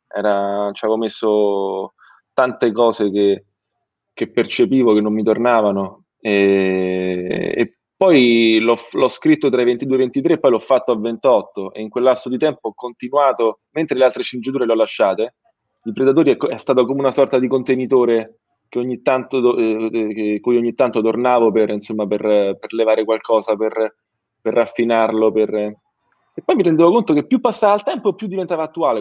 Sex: male